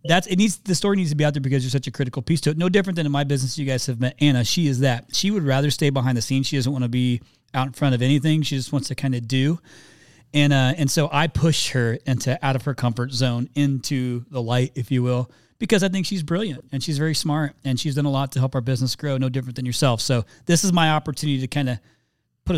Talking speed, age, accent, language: 285 wpm, 30-49, American, English